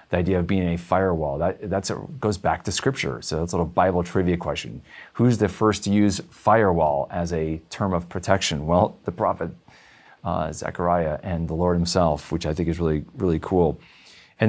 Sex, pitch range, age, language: male, 85-110 Hz, 40-59, English